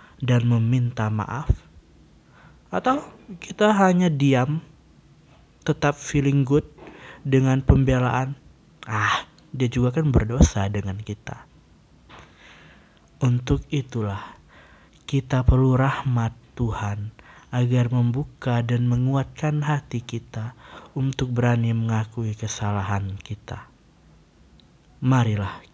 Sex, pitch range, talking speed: male, 110-135 Hz, 85 wpm